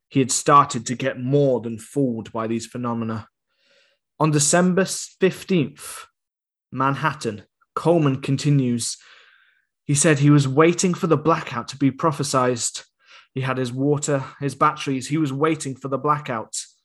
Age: 20-39